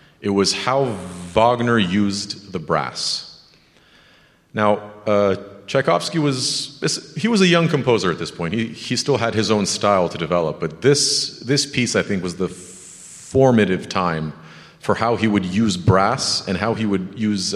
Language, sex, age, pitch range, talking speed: English, male, 40-59, 100-140 Hz, 165 wpm